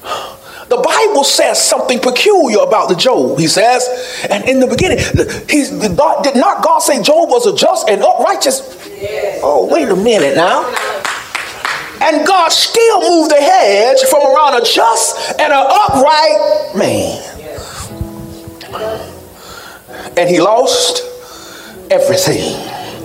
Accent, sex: American, male